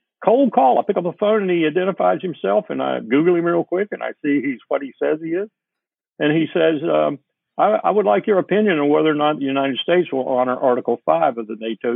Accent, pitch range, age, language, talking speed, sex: American, 115-175 Hz, 60-79, English, 250 wpm, male